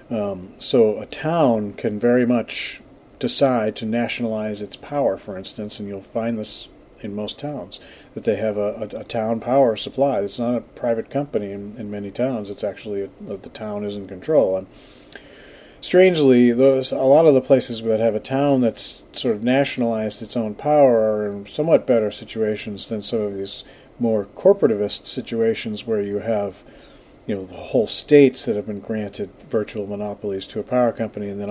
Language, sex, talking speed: English, male, 190 wpm